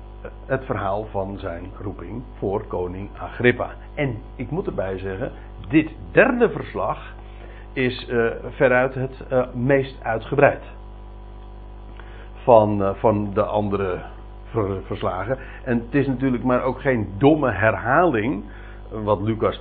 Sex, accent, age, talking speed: male, Dutch, 60-79, 125 wpm